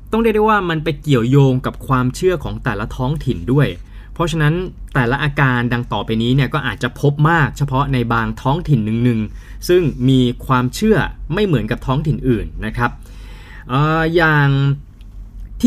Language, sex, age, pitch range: Thai, male, 20-39, 110-150 Hz